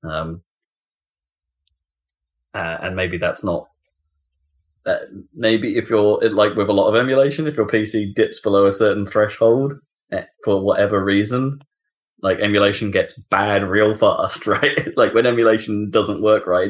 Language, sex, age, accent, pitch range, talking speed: English, male, 20-39, British, 85-125 Hz, 145 wpm